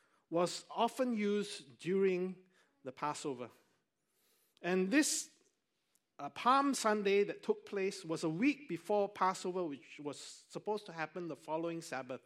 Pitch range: 175-255 Hz